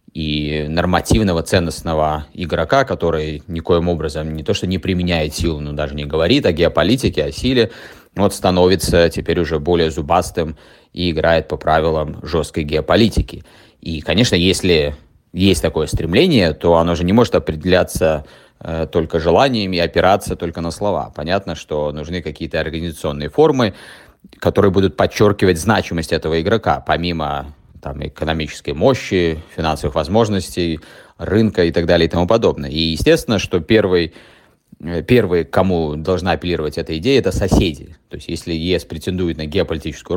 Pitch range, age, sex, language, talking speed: 75-90 Hz, 30-49, male, Russian, 145 wpm